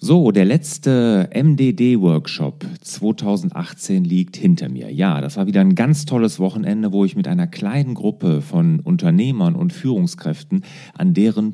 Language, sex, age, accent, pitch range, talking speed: German, male, 40-59, German, 150-185 Hz, 145 wpm